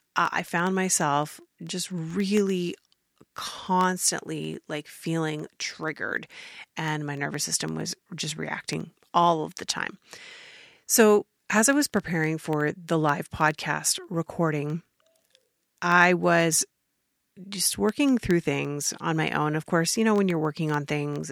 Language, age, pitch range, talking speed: English, 30-49, 155-200 Hz, 135 wpm